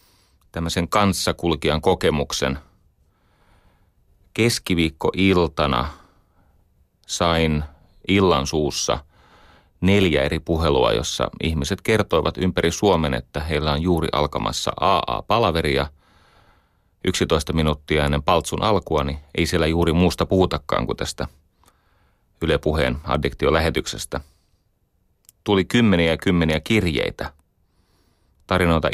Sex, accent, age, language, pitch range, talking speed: male, native, 30-49, Finnish, 75-95 Hz, 85 wpm